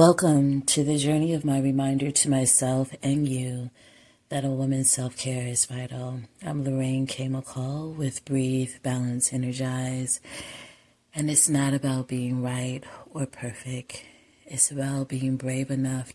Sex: female